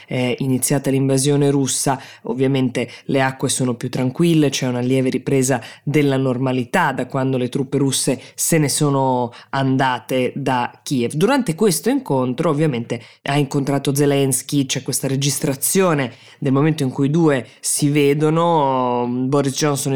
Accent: native